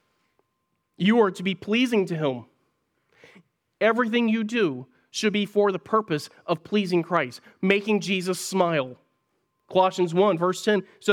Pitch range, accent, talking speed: 145-195 Hz, American, 140 wpm